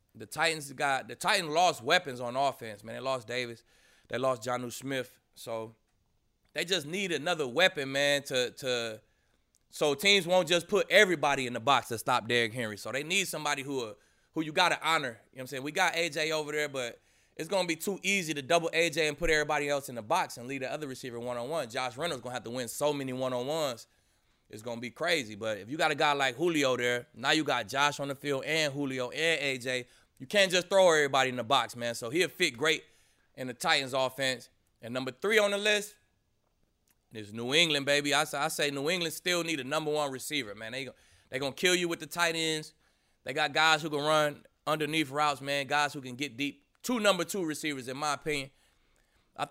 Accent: American